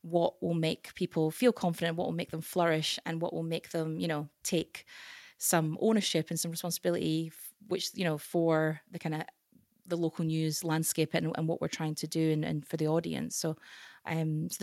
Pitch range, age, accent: 160-180 Hz, 20-39, British